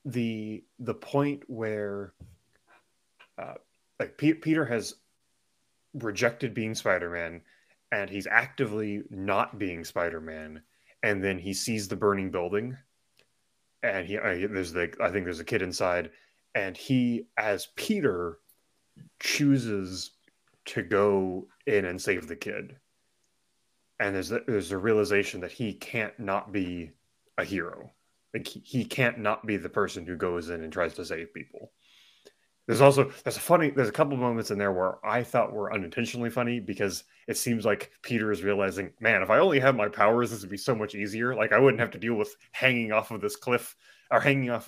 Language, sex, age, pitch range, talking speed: English, male, 20-39, 95-120 Hz, 175 wpm